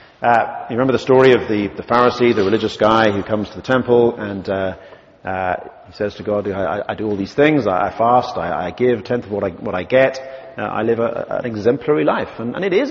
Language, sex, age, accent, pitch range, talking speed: English, male, 40-59, British, 110-180 Hz, 260 wpm